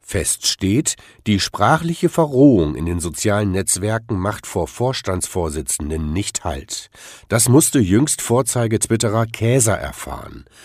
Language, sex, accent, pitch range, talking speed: German, male, German, 90-120 Hz, 115 wpm